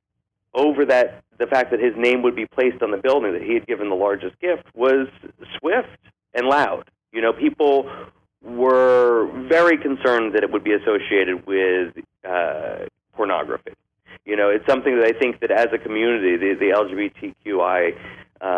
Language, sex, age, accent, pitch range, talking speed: English, male, 40-59, American, 105-145 Hz, 170 wpm